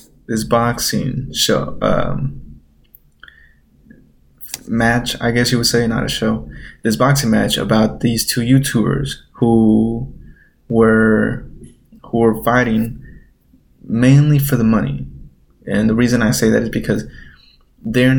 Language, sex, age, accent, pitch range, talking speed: English, male, 20-39, American, 110-125 Hz, 125 wpm